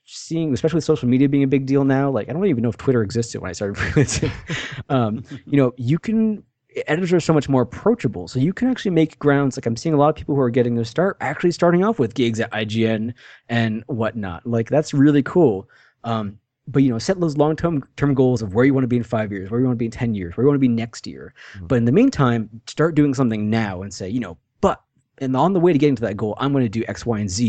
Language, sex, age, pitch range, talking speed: English, male, 20-39, 110-140 Hz, 270 wpm